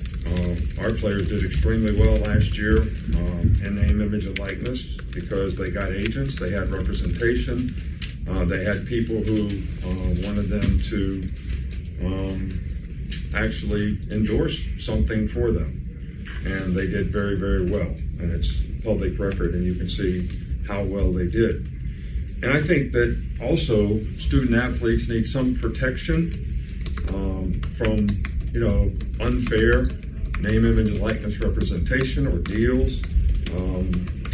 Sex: male